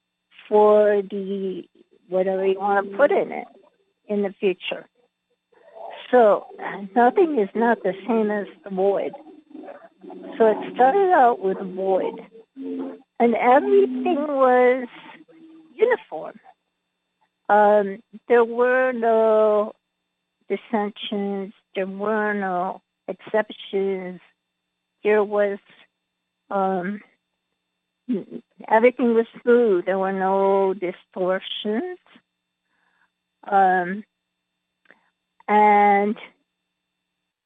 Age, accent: 50-69, American